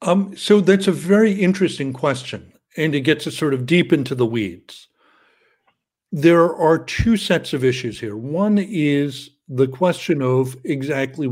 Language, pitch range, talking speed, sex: English, 130-165 Hz, 160 wpm, male